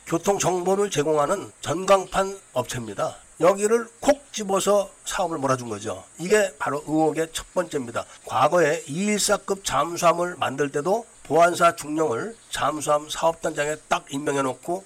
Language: Korean